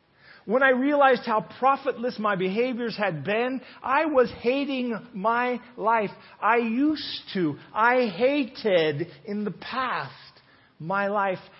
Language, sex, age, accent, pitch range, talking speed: English, male, 40-59, American, 170-230 Hz, 125 wpm